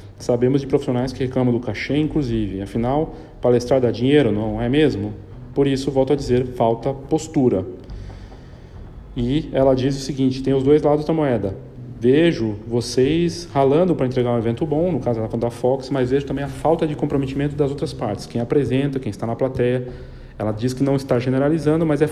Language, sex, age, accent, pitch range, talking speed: Portuguese, male, 40-59, Brazilian, 120-150 Hz, 185 wpm